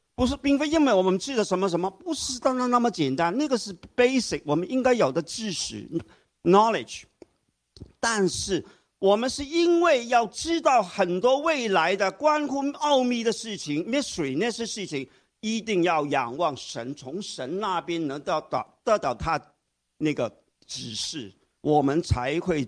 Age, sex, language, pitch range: 50-69, male, Chinese, 150-235 Hz